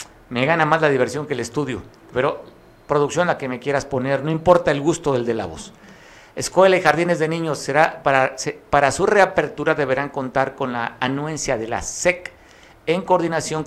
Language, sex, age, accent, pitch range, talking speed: Spanish, male, 50-69, Mexican, 120-150 Hz, 190 wpm